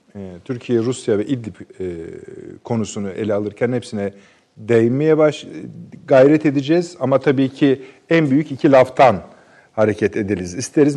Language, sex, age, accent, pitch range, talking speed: Turkish, male, 50-69, native, 115-155 Hz, 120 wpm